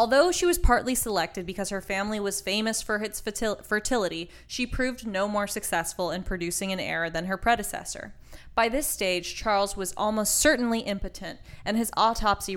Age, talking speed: 10-29, 170 wpm